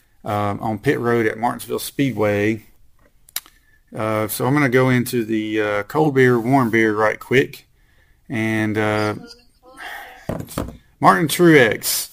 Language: English